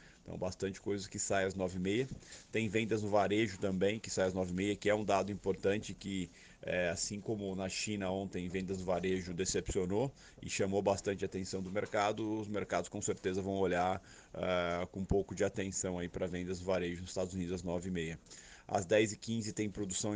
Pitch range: 95-105 Hz